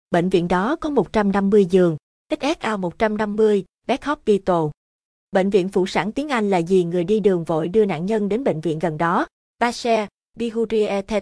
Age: 20-39